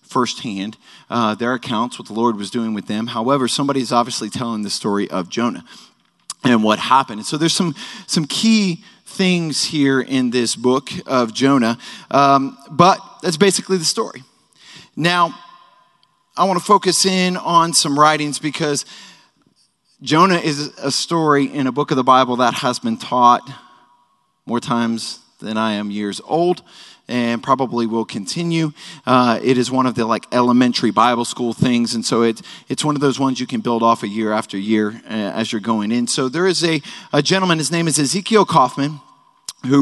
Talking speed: 180 wpm